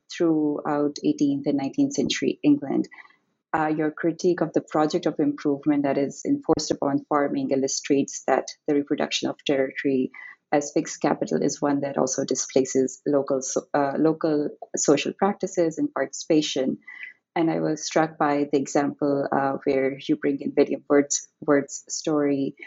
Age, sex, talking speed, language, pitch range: 30-49, female, 145 wpm, English, 140-160 Hz